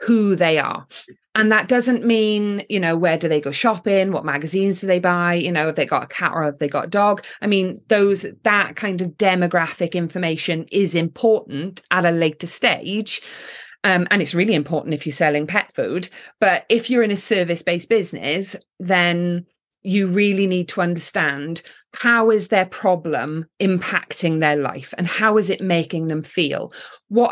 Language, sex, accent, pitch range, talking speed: English, female, British, 165-210 Hz, 185 wpm